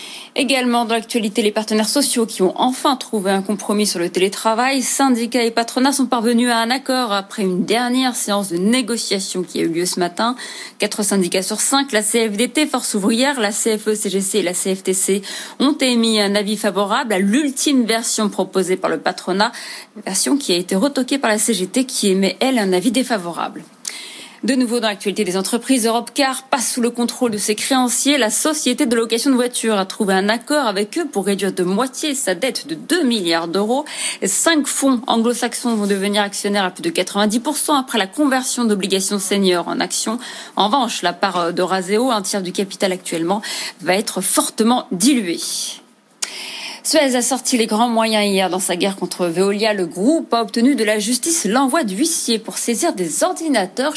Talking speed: 190 wpm